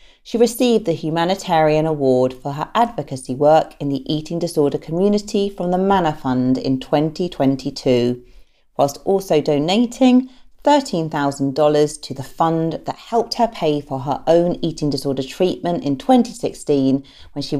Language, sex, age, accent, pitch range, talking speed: English, female, 40-59, British, 135-180 Hz, 140 wpm